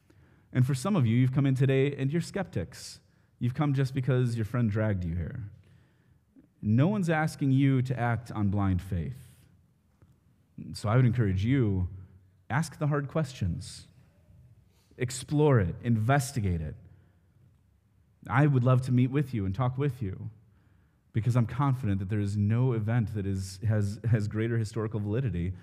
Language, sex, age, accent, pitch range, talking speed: English, male, 30-49, American, 105-140 Hz, 160 wpm